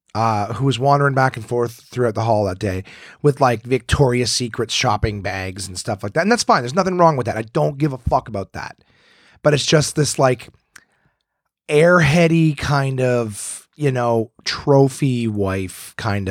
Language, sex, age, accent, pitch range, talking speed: English, male, 30-49, American, 110-150 Hz, 185 wpm